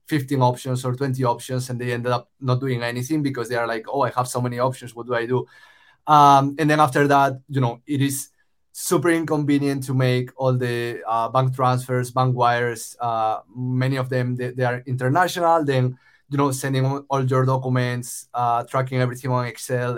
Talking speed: 200 wpm